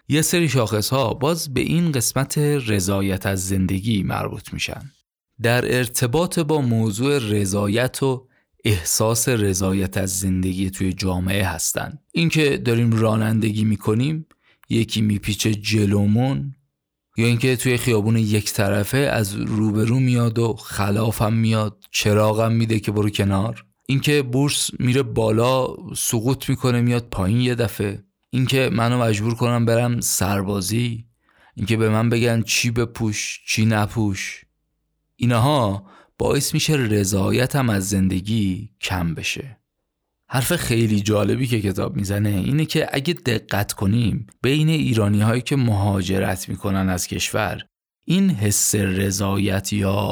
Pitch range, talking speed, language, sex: 100-125 Hz, 125 wpm, Persian, male